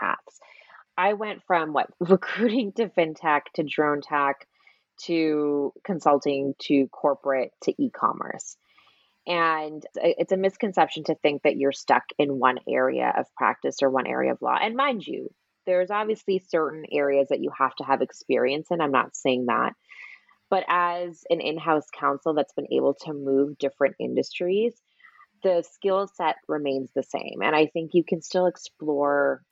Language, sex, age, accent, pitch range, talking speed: English, female, 20-39, American, 140-185 Hz, 160 wpm